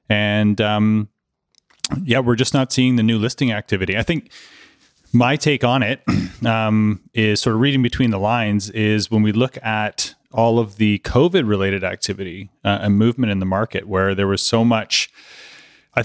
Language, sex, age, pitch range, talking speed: English, male, 30-49, 100-115 Hz, 180 wpm